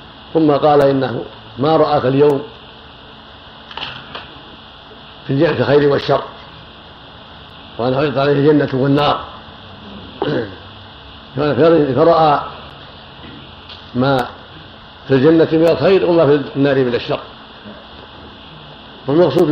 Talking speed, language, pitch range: 85 wpm, Arabic, 125-150 Hz